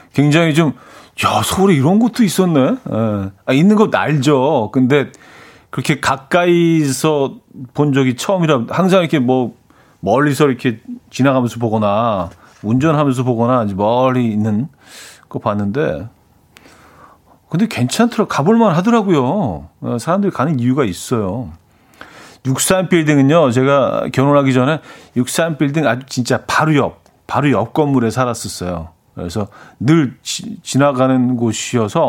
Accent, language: native, Korean